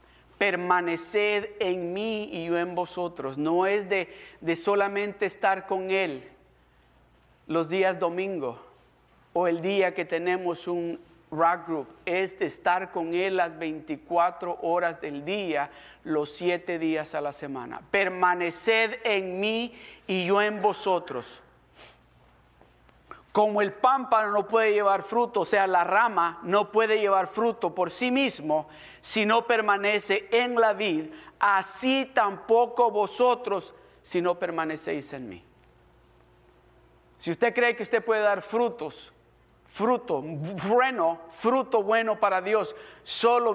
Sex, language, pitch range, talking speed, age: male, Spanish, 170-215 Hz, 130 wpm, 50-69